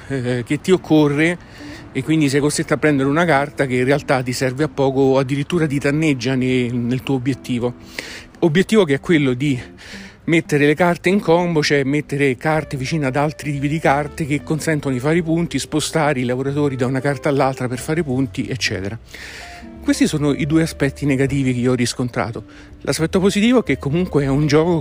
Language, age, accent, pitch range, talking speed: Italian, 40-59, native, 130-155 Hz, 195 wpm